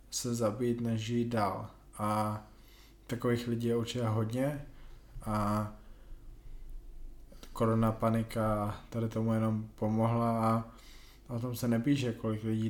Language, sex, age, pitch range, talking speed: Slovak, male, 20-39, 115-120 Hz, 120 wpm